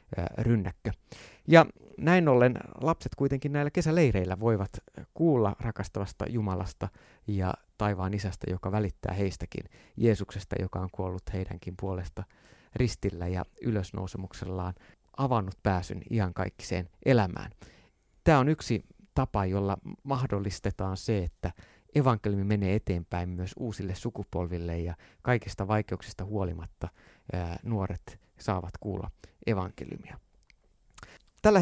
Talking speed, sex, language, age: 100 wpm, male, Finnish, 30-49